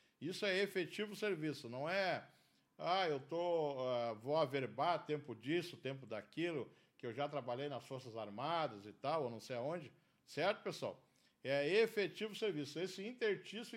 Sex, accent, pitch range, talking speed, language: male, Brazilian, 150-210 Hz, 150 wpm, Portuguese